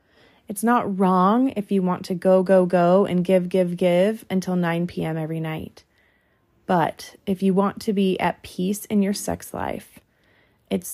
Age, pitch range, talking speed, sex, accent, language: 20-39, 165-195 Hz, 175 wpm, female, American, English